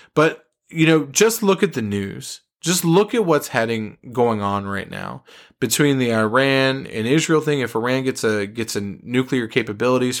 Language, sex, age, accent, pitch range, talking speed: English, male, 20-39, American, 110-135 Hz, 180 wpm